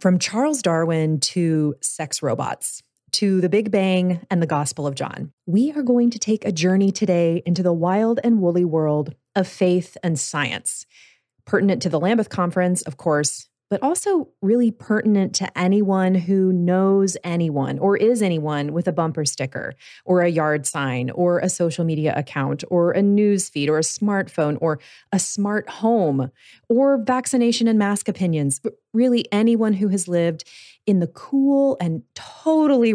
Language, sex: English, female